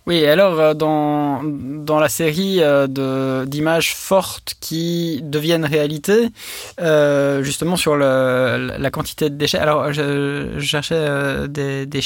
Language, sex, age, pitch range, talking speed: French, male, 20-39, 135-165 Hz, 130 wpm